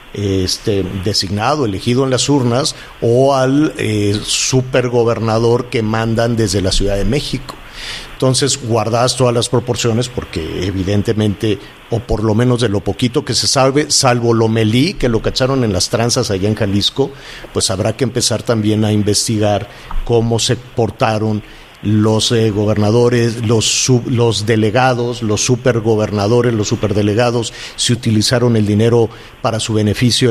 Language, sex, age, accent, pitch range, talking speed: Spanish, male, 50-69, Mexican, 105-125 Hz, 145 wpm